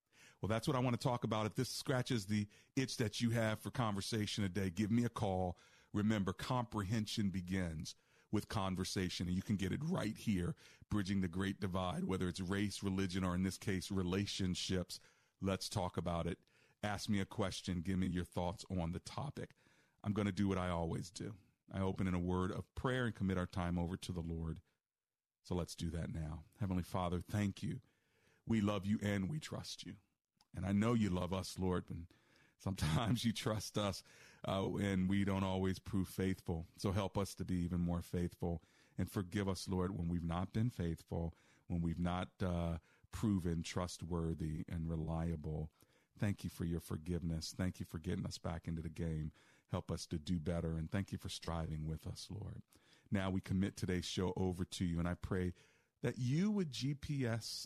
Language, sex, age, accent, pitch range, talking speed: English, male, 40-59, American, 90-110 Hz, 195 wpm